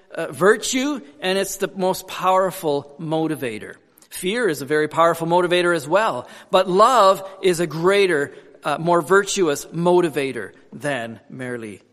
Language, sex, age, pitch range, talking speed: English, male, 40-59, 140-190 Hz, 135 wpm